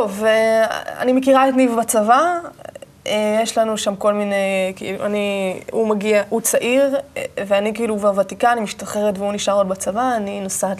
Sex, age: female, 20-39